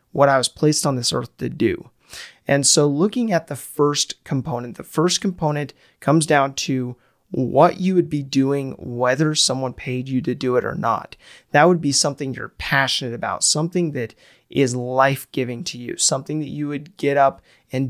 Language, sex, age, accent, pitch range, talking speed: English, male, 30-49, American, 130-160 Hz, 190 wpm